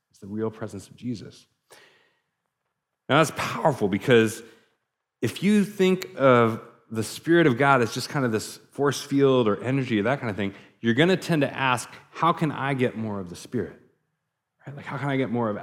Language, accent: English, American